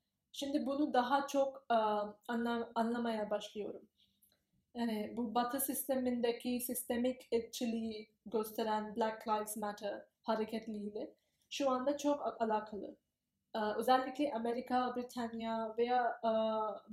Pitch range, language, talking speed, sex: 225-270 Hz, Turkish, 105 wpm, female